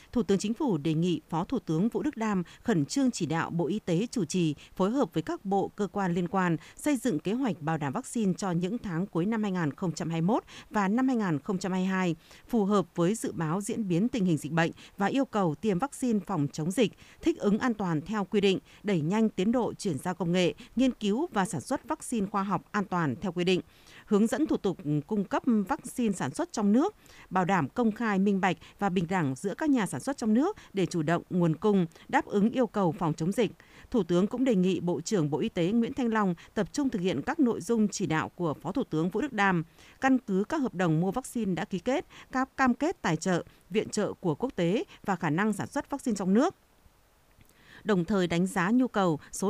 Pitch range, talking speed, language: 175-235 Hz, 240 wpm, Vietnamese